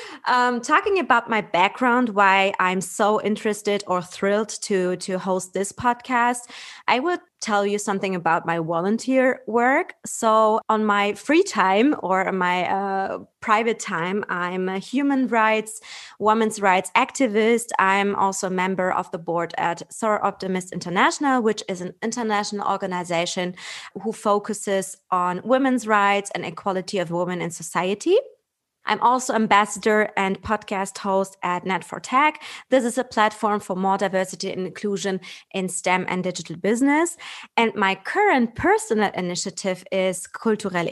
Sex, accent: female, German